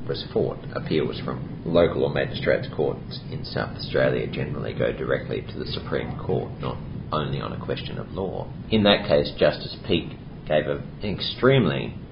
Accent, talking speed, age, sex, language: Australian, 165 wpm, 40-59, male, English